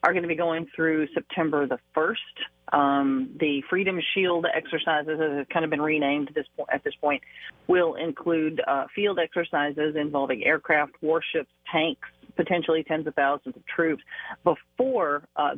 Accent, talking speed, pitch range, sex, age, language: American, 155 wpm, 140-165 Hz, female, 40-59, English